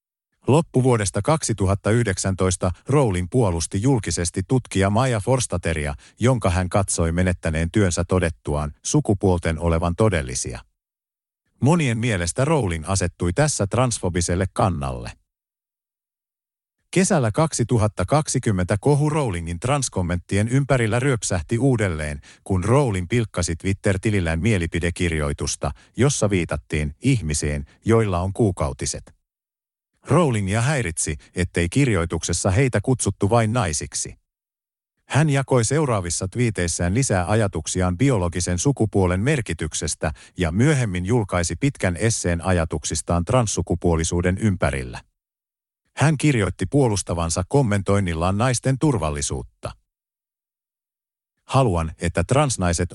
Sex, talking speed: male, 85 wpm